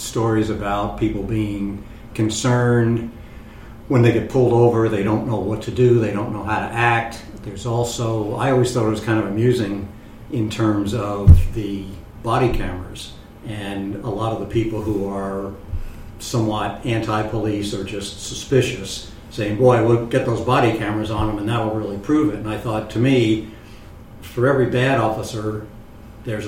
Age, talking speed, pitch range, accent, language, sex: 60-79, 170 wpm, 105-120 Hz, American, English, male